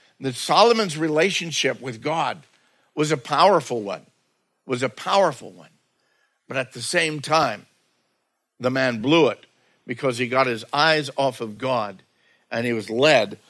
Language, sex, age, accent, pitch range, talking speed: English, male, 60-79, American, 130-150 Hz, 150 wpm